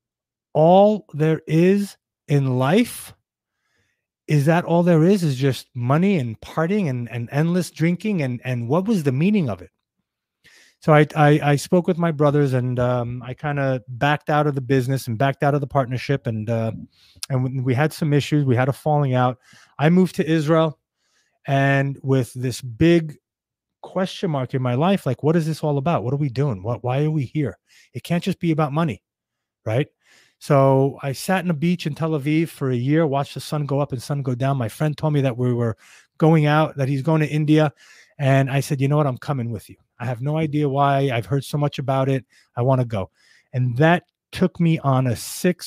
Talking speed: 215 wpm